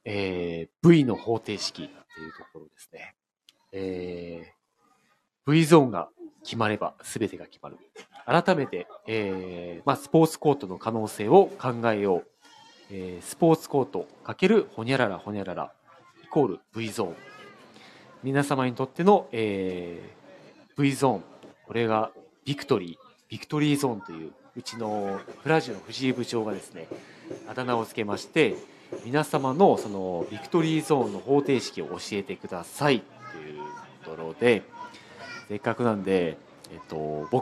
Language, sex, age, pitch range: Japanese, male, 40-59, 95-145 Hz